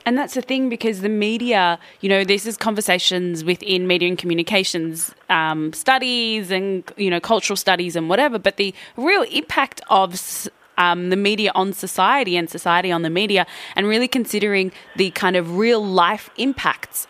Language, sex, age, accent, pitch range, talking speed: English, female, 20-39, Australian, 165-200 Hz, 170 wpm